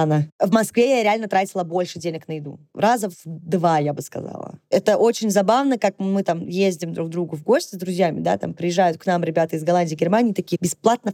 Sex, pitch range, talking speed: female, 185-255 Hz, 215 wpm